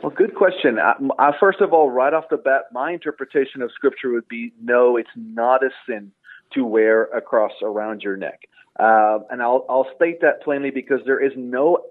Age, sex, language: 40-59, male, English